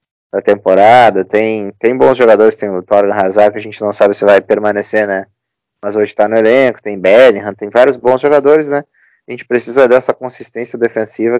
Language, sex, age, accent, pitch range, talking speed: Portuguese, male, 20-39, Brazilian, 105-125 Hz, 190 wpm